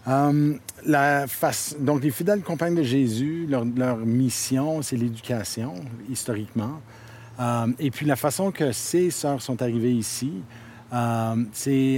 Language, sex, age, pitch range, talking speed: French, male, 50-69, 115-135 Hz, 140 wpm